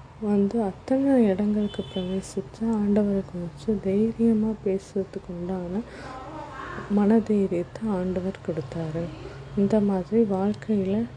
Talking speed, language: 75 wpm, Tamil